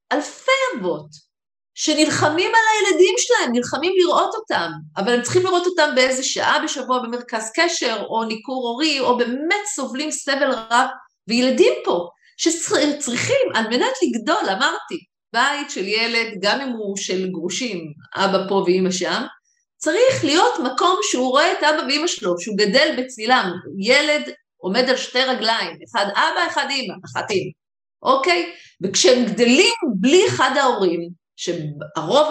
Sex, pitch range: female, 190-300 Hz